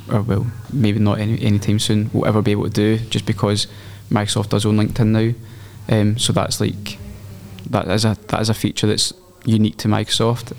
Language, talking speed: English, 200 wpm